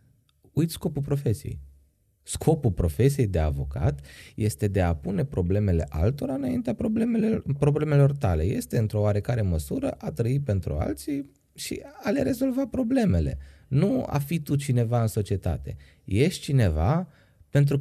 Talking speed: 130 wpm